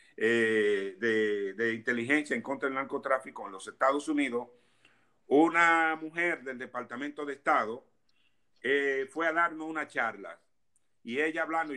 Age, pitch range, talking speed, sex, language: 50-69, 135-165 Hz, 140 wpm, male, Spanish